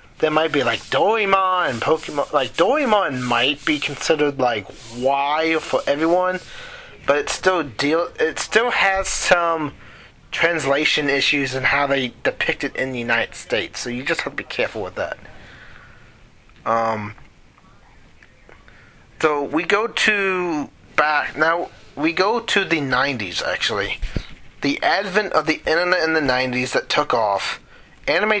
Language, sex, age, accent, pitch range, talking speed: English, male, 30-49, American, 125-175 Hz, 145 wpm